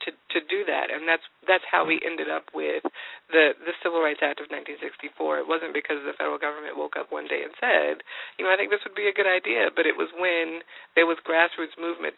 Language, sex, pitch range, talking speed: English, female, 150-170 Hz, 250 wpm